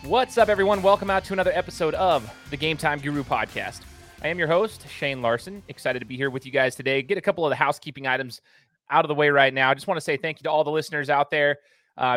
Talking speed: 270 wpm